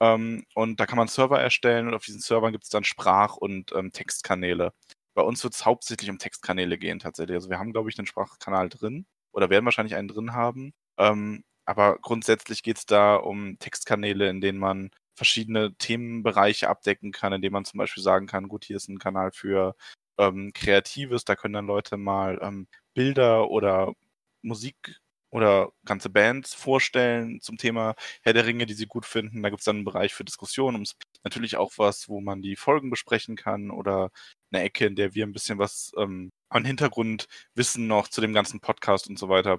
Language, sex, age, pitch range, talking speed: German, male, 20-39, 100-120 Hz, 195 wpm